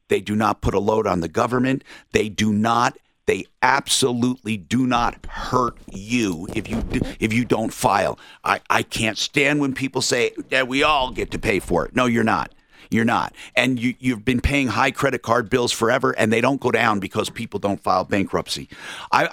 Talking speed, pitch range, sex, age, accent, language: 195 wpm, 110-145 Hz, male, 50-69, American, English